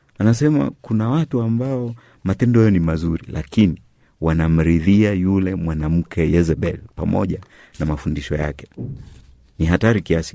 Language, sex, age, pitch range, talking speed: Swahili, male, 50-69, 80-95 Hz, 110 wpm